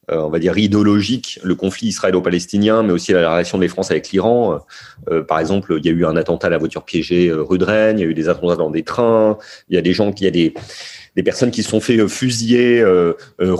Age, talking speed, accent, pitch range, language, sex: 30-49, 260 wpm, French, 85-110 Hz, French, male